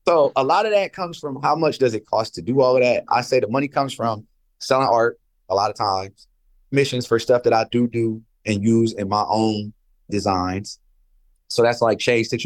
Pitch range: 105-140 Hz